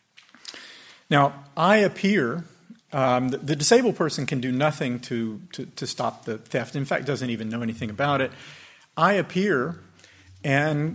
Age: 50-69